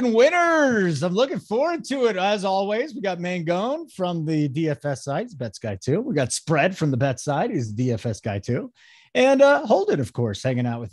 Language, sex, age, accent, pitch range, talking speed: English, male, 30-49, American, 155-210 Hz, 225 wpm